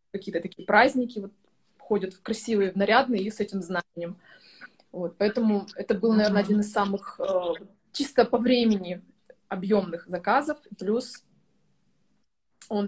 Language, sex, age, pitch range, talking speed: Russian, female, 20-39, 200-245 Hz, 135 wpm